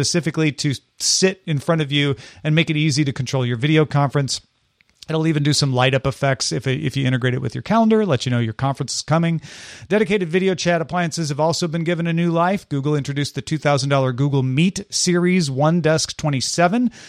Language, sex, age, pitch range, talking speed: English, male, 40-59, 135-165 Hz, 200 wpm